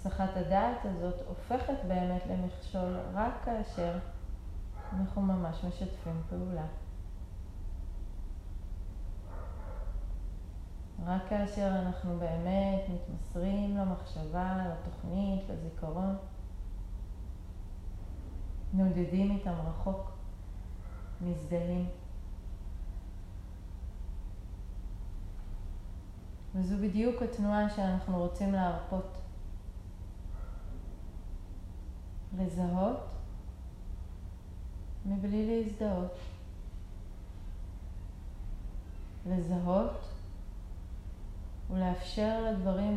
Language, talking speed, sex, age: Hebrew, 50 wpm, female, 30-49